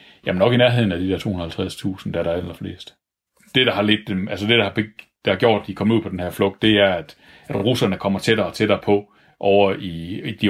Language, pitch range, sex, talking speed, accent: Danish, 95-115 Hz, male, 255 wpm, native